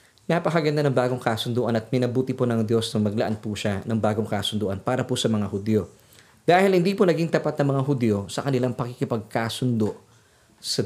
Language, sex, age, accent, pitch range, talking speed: Filipino, male, 20-39, native, 115-140 Hz, 180 wpm